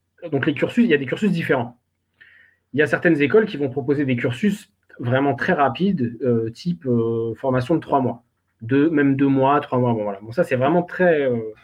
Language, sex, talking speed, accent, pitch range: French, male, 220 wpm, French, 125-165 Hz